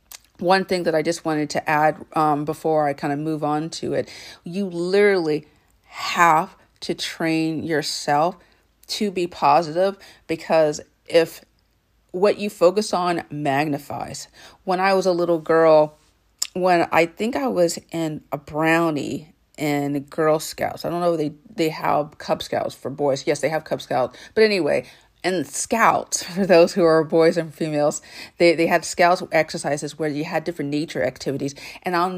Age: 40-59